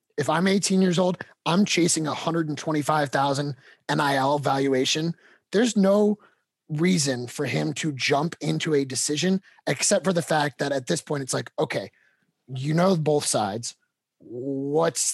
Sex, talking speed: male, 145 wpm